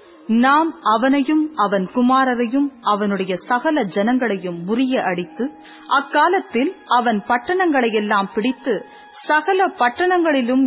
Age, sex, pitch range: 30-49, female, 215-290 Hz